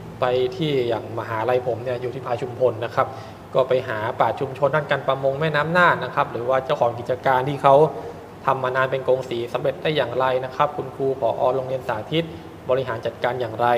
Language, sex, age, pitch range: Thai, male, 20-39, 120-145 Hz